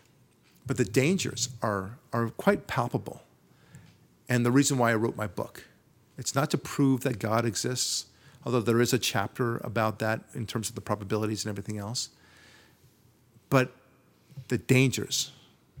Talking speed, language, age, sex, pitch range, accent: 150 wpm, English, 50-69, male, 115-140 Hz, American